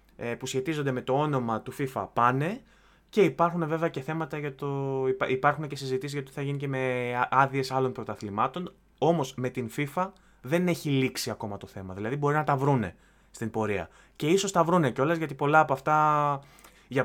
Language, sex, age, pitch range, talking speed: Greek, male, 20-39, 125-155 Hz, 185 wpm